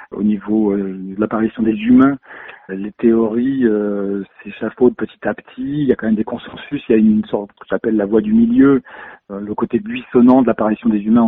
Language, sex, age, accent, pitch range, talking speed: French, male, 40-59, French, 110-140 Hz, 220 wpm